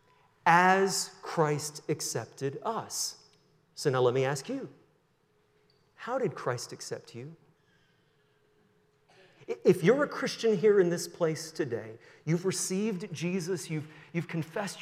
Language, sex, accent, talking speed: English, male, American, 120 wpm